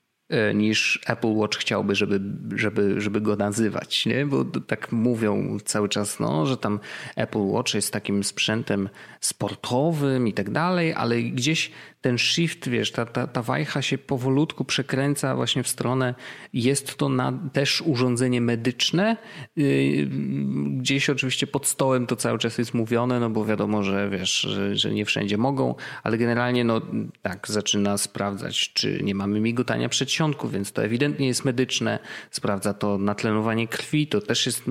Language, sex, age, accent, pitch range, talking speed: Polish, male, 30-49, native, 105-135 Hz, 150 wpm